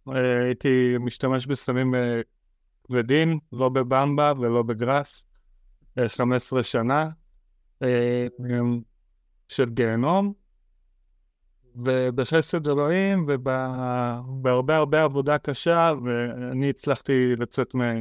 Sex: male